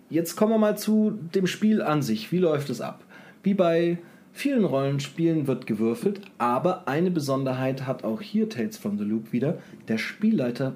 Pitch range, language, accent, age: 130-205 Hz, German, German, 30-49